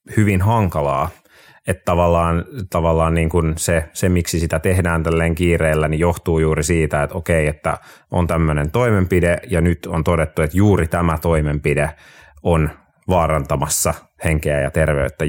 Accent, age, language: native, 30-49, Finnish